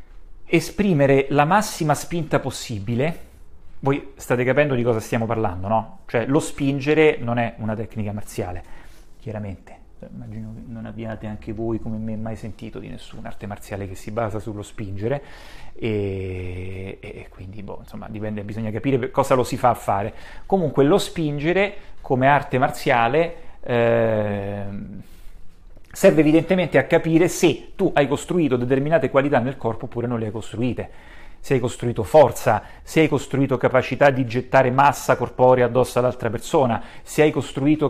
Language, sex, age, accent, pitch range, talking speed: Italian, male, 30-49, native, 115-145 Hz, 150 wpm